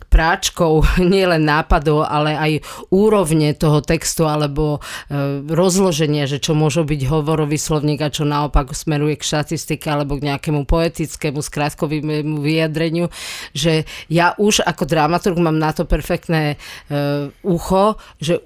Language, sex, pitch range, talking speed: Slovak, female, 150-170 Hz, 130 wpm